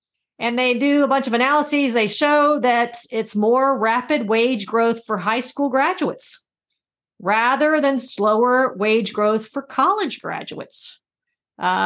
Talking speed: 140 wpm